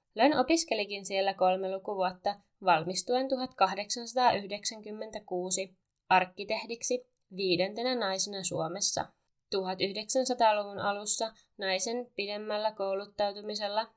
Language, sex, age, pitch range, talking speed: Finnish, female, 20-39, 185-230 Hz, 70 wpm